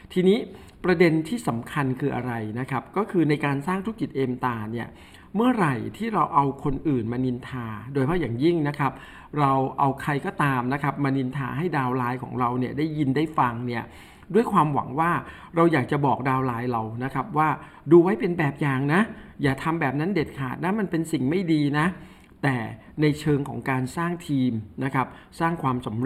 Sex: male